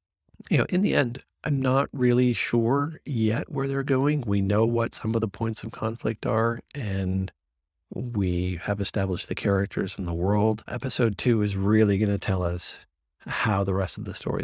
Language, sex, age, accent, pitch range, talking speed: English, male, 40-59, American, 90-120 Hz, 190 wpm